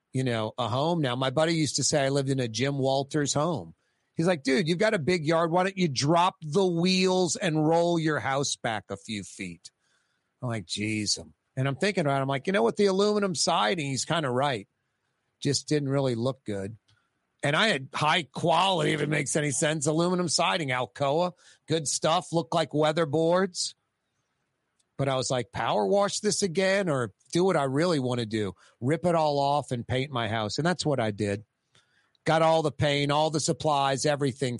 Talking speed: 210 wpm